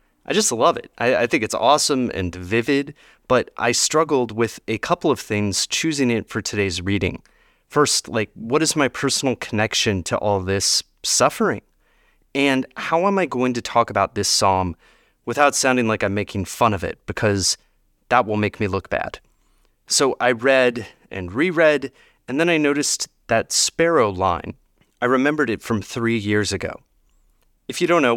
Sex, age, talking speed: male, 30-49, 175 wpm